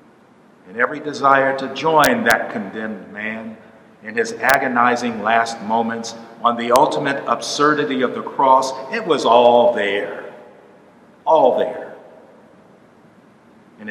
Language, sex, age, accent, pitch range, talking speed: English, male, 50-69, American, 115-135 Hz, 115 wpm